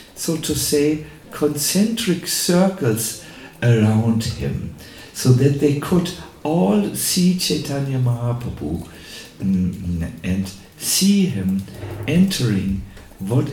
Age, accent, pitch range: 60-79, German, 100-150 Hz